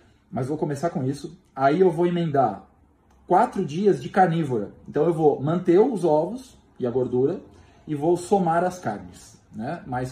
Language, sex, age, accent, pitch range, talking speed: Portuguese, male, 20-39, Brazilian, 145-180 Hz, 170 wpm